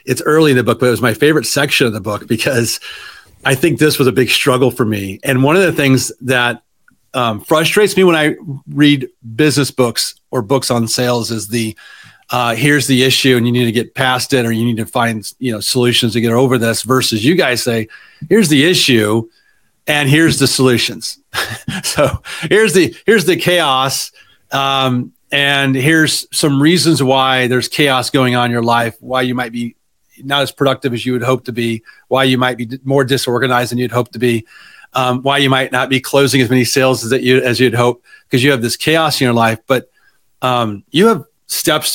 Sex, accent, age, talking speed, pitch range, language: male, American, 40-59, 215 wpm, 120-140 Hz, English